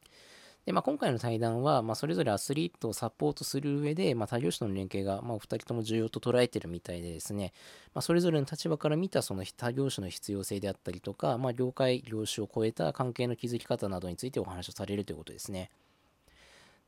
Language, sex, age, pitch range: Japanese, male, 20-39, 100-130 Hz